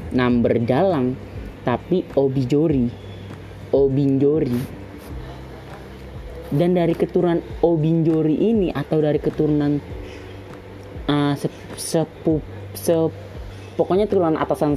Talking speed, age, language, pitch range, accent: 70 wpm, 20-39, Indonesian, 100-160 Hz, native